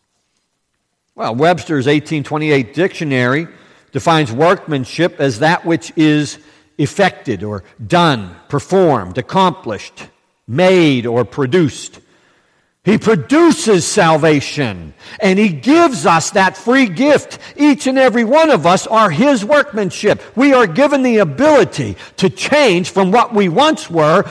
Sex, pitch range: male, 140-210 Hz